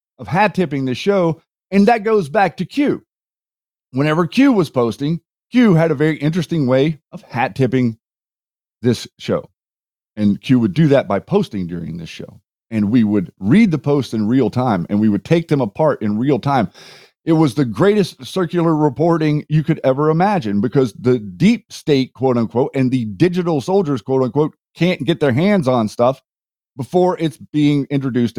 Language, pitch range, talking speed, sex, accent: English, 125-170 Hz, 180 wpm, male, American